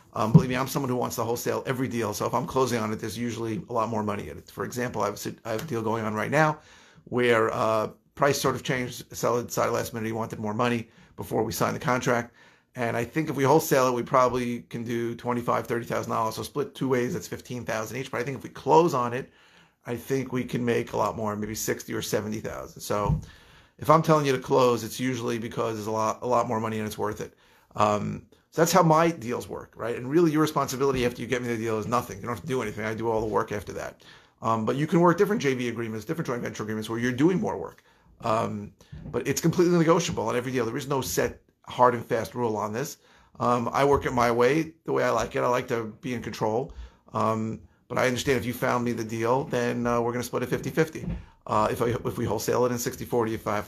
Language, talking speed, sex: English, 265 wpm, male